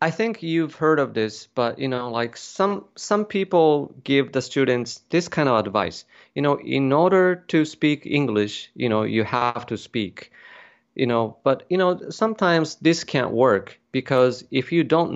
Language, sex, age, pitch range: Japanese, male, 30-49, 115-150 Hz